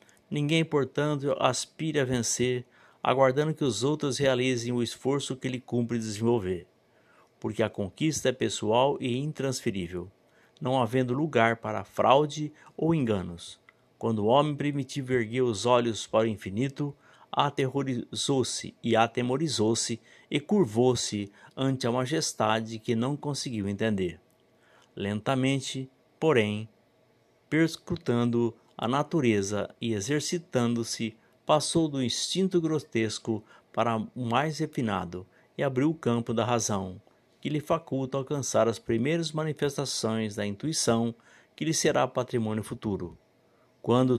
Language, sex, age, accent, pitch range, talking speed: Spanish, male, 60-79, Brazilian, 110-145 Hz, 120 wpm